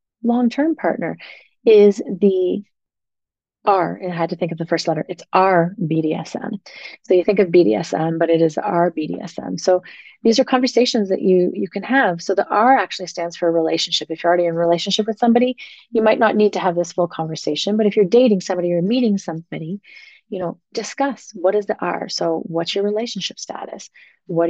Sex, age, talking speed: female, 30-49, 200 wpm